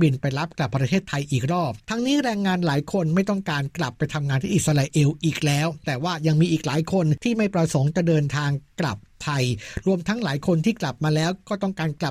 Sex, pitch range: male, 145-185 Hz